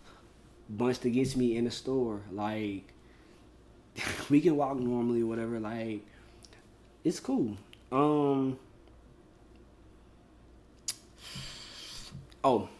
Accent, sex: American, male